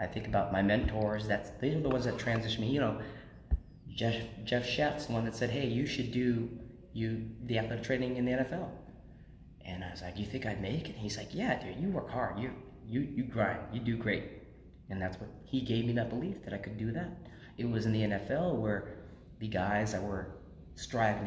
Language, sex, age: English, male, 30-49